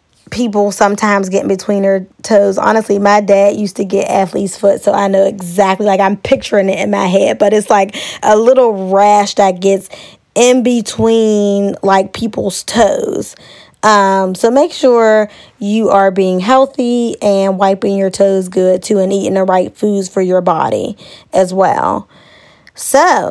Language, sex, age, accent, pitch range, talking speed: English, female, 20-39, American, 195-245 Hz, 165 wpm